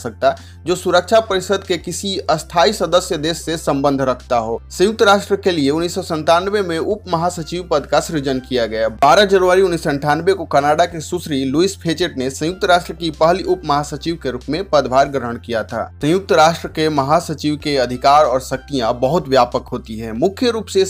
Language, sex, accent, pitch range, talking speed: Hindi, male, native, 135-180 Hz, 185 wpm